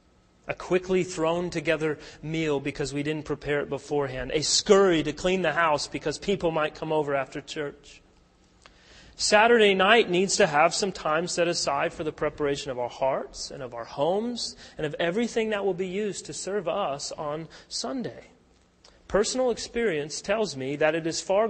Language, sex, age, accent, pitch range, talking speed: English, male, 30-49, American, 140-180 Hz, 175 wpm